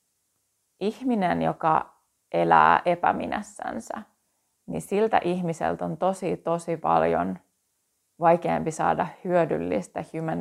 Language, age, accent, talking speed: Finnish, 30-49, native, 85 wpm